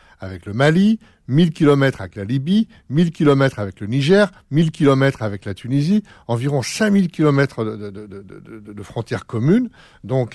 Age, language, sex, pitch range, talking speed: 60-79, French, male, 110-145 Hz, 170 wpm